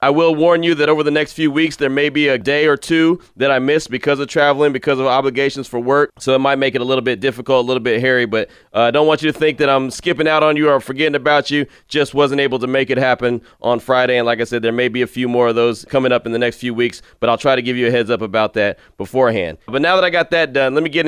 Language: English